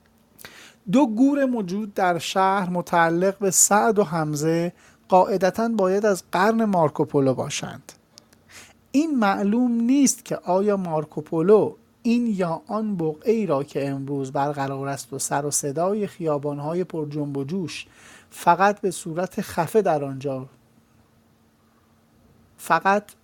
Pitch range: 150-200 Hz